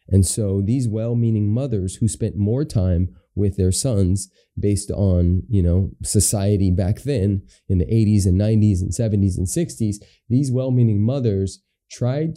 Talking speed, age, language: 155 wpm, 30-49, English